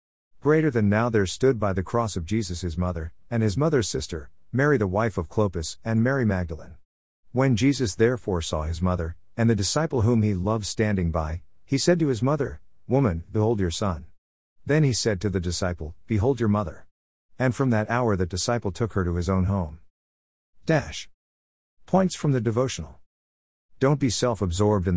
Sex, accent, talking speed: male, American, 185 wpm